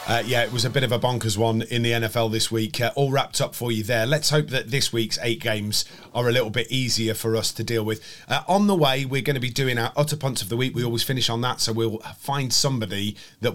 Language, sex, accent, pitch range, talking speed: English, male, British, 110-130 Hz, 285 wpm